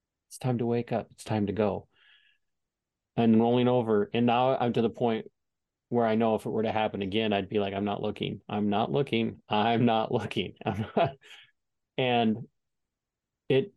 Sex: male